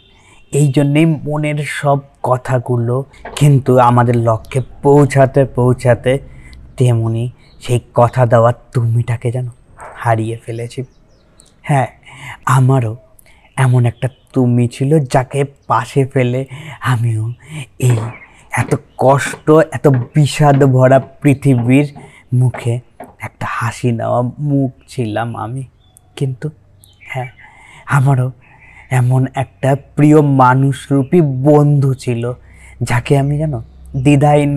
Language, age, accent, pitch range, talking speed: Bengali, 30-49, native, 120-140 Hz, 75 wpm